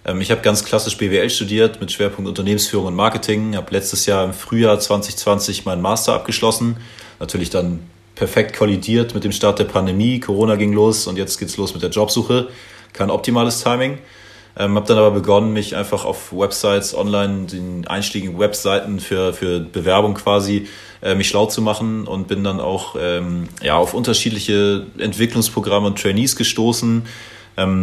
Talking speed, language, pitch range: 165 wpm, German, 95-110 Hz